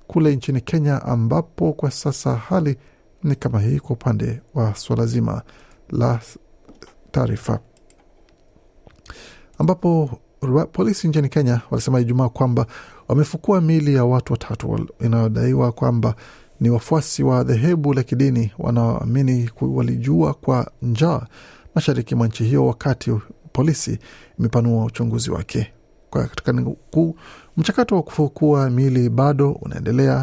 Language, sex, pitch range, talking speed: Swahili, male, 115-145 Hz, 115 wpm